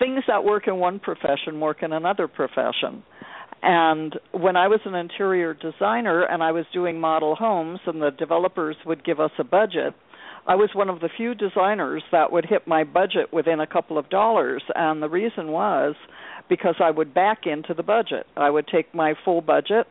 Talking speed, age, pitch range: 195 wpm, 50-69, 160-195 Hz